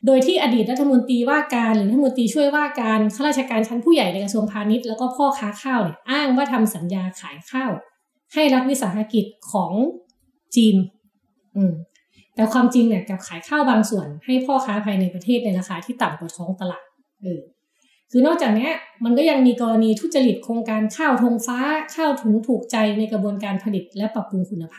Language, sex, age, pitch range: Thai, female, 20-39, 195-260 Hz